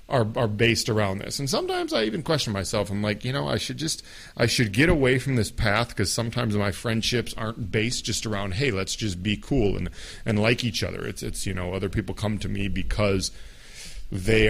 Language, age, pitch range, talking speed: English, 40-59, 100-125 Hz, 225 wpm